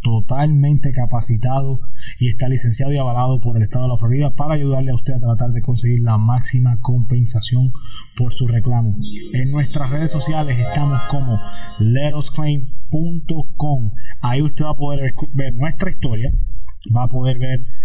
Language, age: Spanish, 20-39